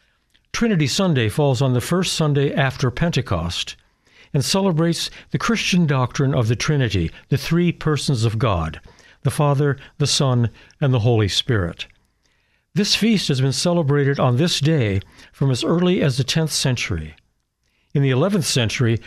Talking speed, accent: 155 wpm, American